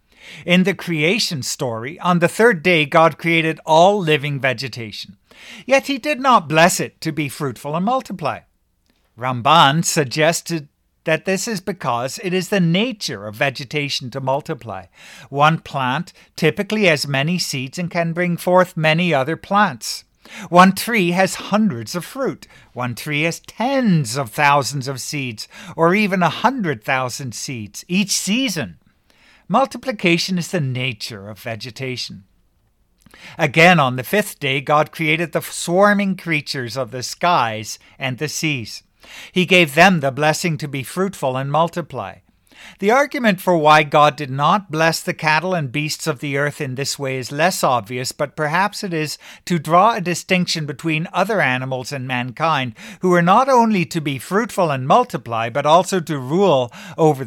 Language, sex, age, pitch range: English, male, 60-79, 135-185 Hz